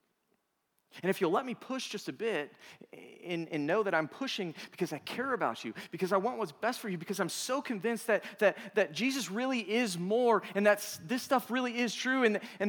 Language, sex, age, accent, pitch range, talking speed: English, male, 40-59, American, 175-230 Hz, 220 wpm